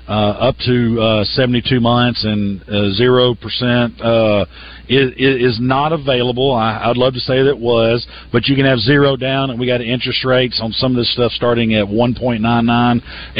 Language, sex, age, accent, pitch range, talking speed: English, male, 50-69, American, 110-130 Hz, 190 wpm